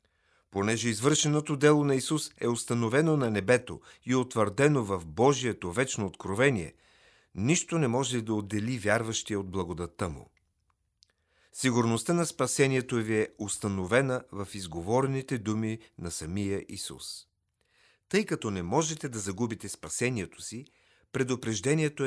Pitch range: 100-130 Hz